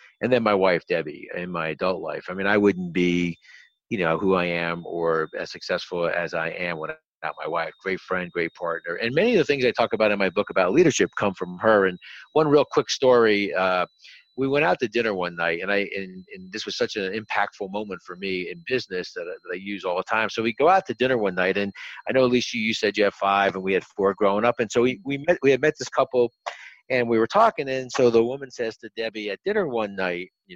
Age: 50-69